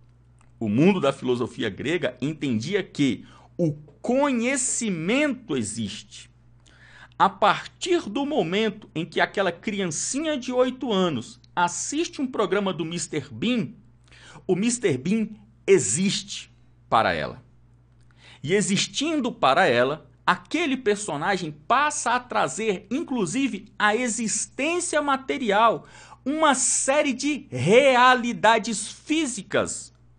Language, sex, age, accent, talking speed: Portuguese, male, 50-69, Brazilian, 100 wpm